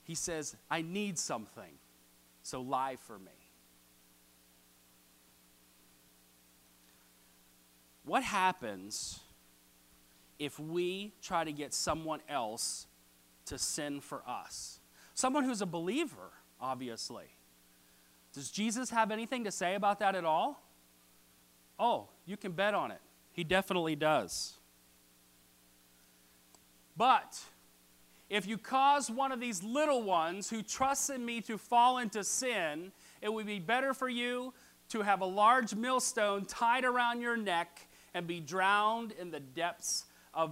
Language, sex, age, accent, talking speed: English, male, 40-59, American, 125 wpm